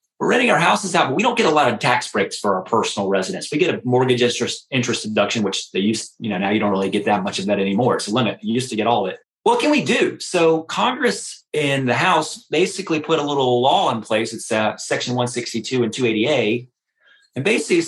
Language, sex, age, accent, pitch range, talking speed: English, male, 30-49, American, 125-165 Hz, 250 wpm